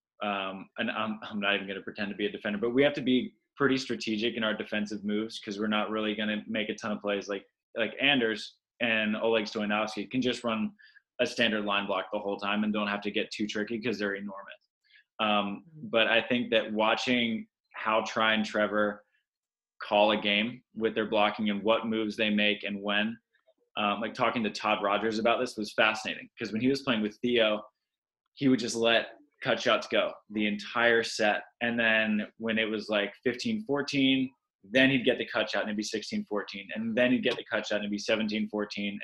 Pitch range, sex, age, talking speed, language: 105-120 Hz, male, 20-39, 215 wpm, English